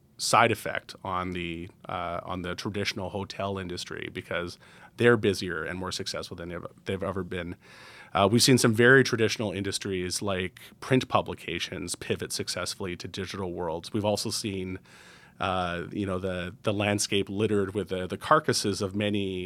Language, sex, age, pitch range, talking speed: English, male, 30-49, 95-110 Hz, 160 wpm